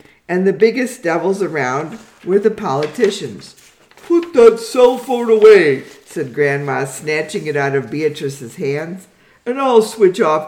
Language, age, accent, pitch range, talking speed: English, 50-69, American, 145-210 Hz, 145 wpm